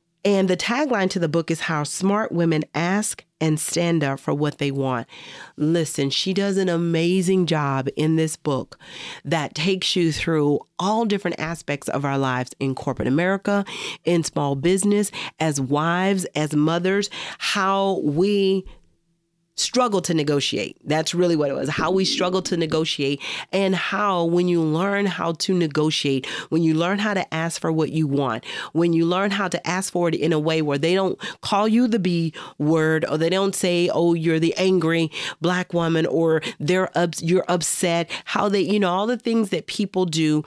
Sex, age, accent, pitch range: female, 40-59, American, 150-185 Hz